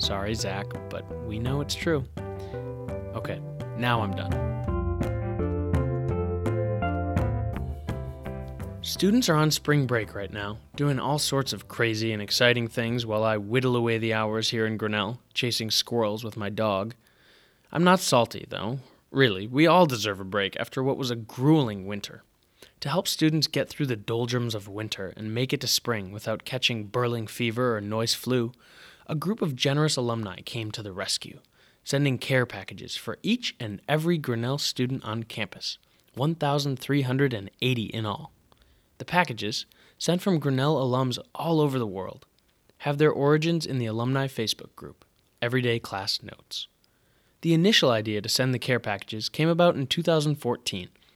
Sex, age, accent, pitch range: male, 20-39, American, 105-135 Hz